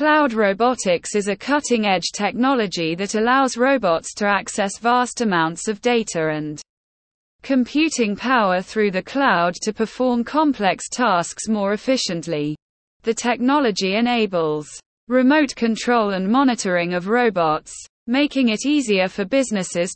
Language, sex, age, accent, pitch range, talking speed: English, female, 20-39, British, 185-250 Hz, 125 wpm